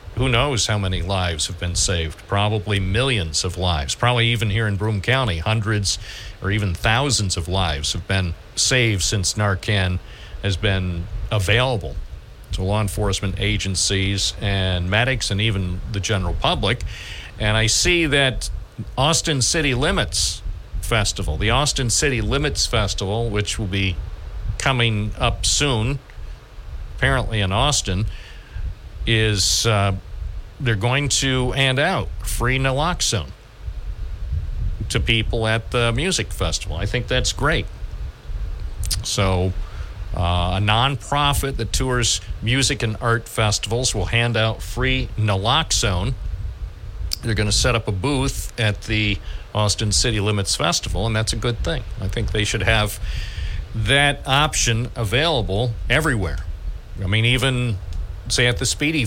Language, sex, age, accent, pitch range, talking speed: English, male, 50-69, American, 95-120 Hz, 135 wpm